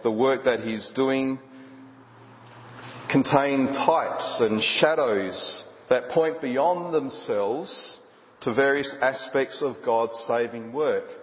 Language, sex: English, male